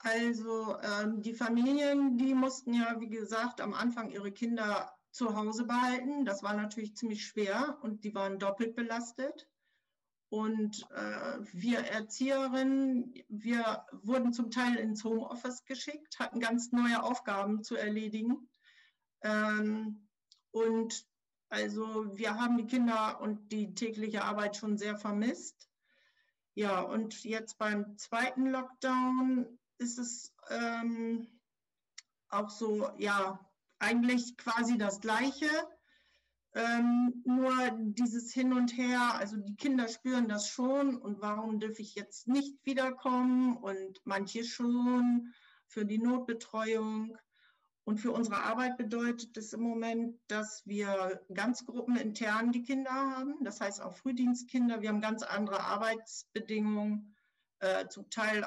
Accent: German